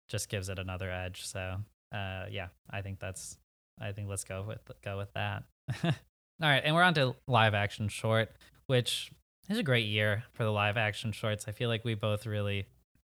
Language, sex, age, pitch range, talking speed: English, male, 20-39, 105-130 Hz, 205 wpm